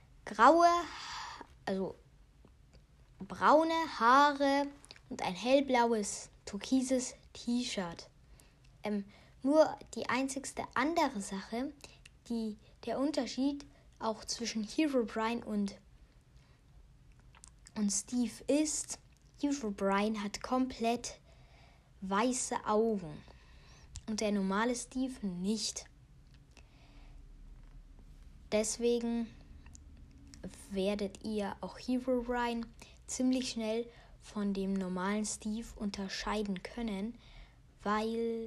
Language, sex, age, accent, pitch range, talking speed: German, female, 20-39, German, 195-255 Hz, 80 wpm